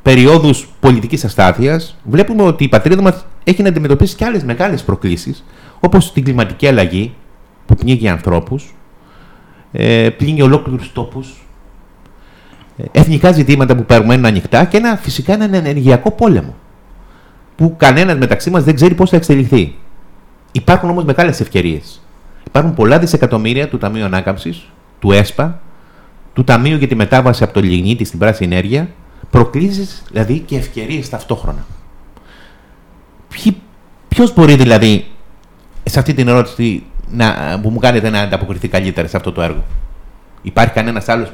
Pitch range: 100-145 Hz